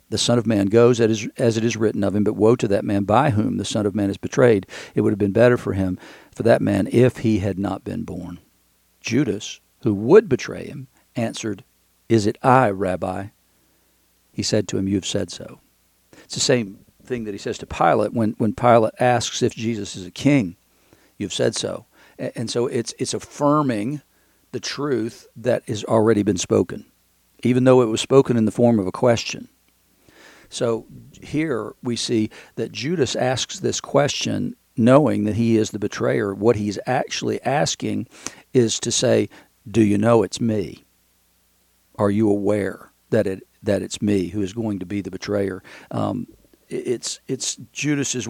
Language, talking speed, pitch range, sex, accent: English, 185 wpm, 100-115 Hz, male, American